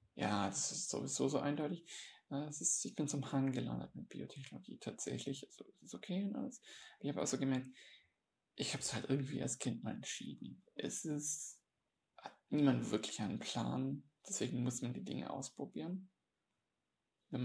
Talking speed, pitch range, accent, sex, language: 165 wpm, 125-145 Hz, German, male, German